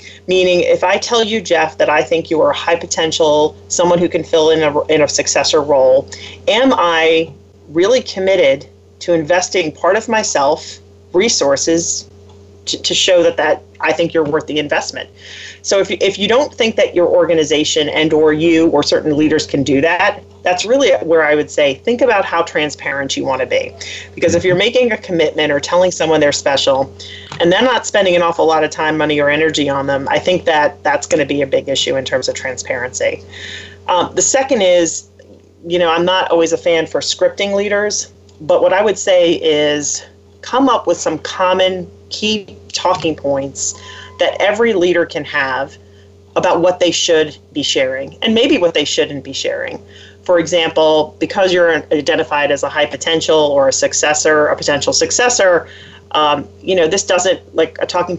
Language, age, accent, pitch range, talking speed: English, 40-59, American, 150-190 Hz, 190 wpm